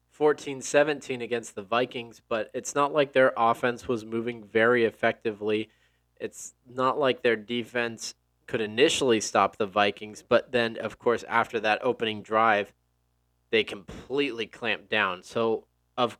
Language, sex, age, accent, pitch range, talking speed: English, male, 20-39, American, 105-125 Hz, 135 wpm